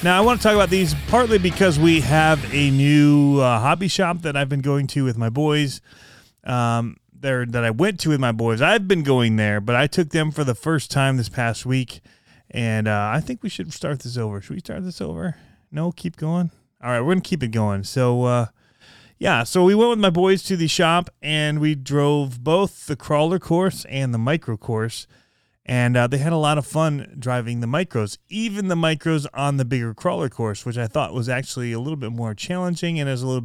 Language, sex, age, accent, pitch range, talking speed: English, male, 30-49, American, 115-160 Hz, 230 wpm